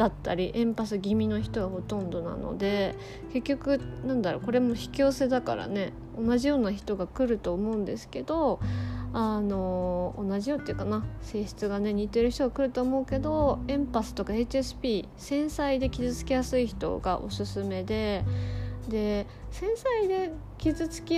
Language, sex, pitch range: Japanese, female, 180-255 Hz